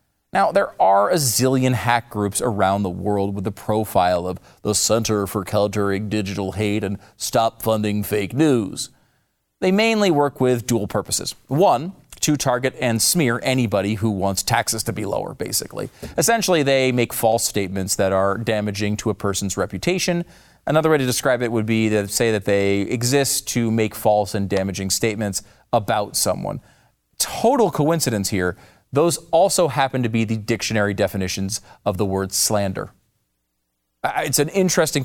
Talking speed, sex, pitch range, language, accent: 160 wpm, male, 105-145 Hz, English, American